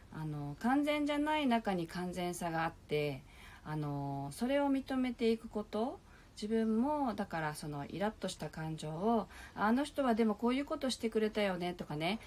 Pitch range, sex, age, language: 155-235 Hz, female, 40-59, Japanese